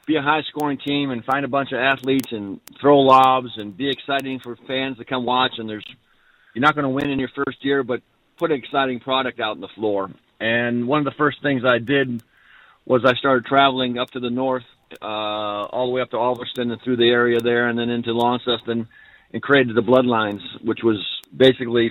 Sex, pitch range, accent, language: male, 120-130 Hz, American, English